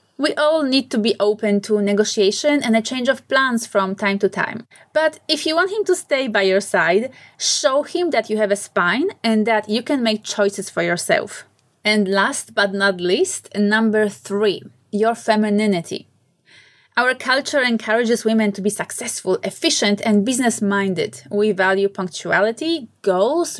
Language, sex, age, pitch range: English, female, 20-39, 205-265 Hz